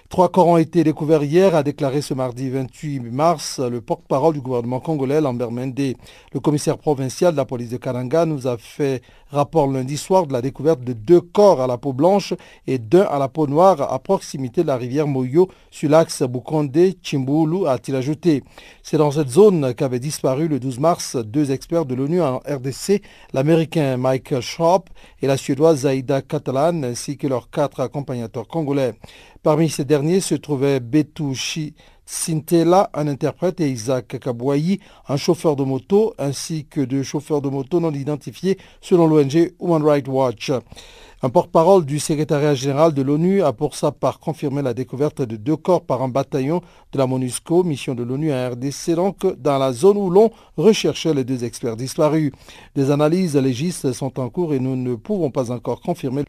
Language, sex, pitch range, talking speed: French, male, 130-165 Hz, 185 wpm